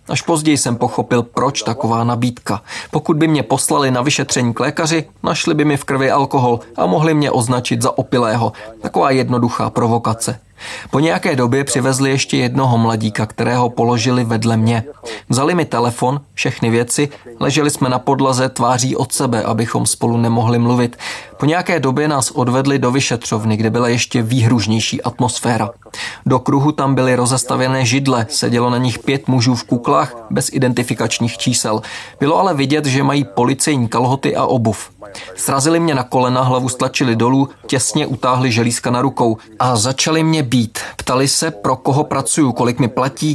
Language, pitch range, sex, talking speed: Czech, 120-140 Hz, male, 165 wpm